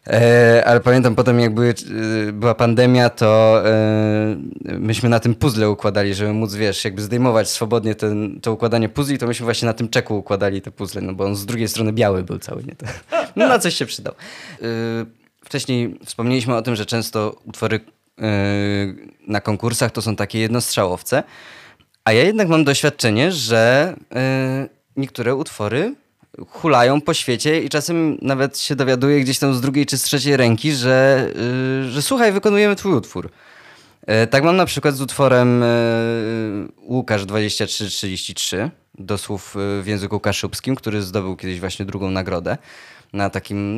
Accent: native